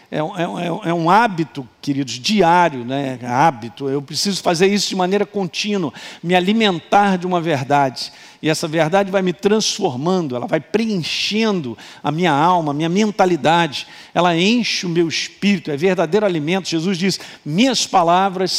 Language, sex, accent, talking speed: Portuguese, male, Brazilian, 150 wpm